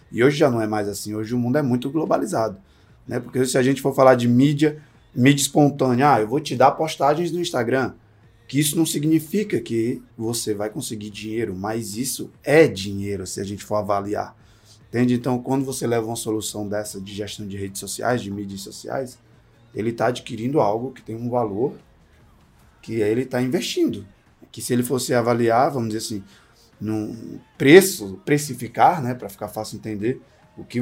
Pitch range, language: 110-130 Hz, Portuguese